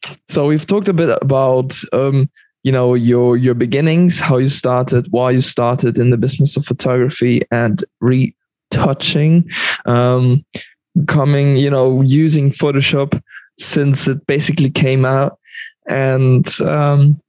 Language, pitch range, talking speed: English, 125-150 Hz, 130 wpm